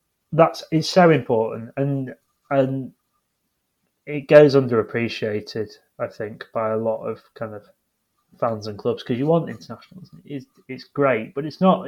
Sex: male